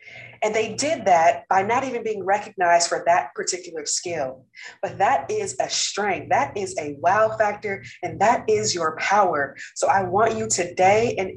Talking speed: 180 wpm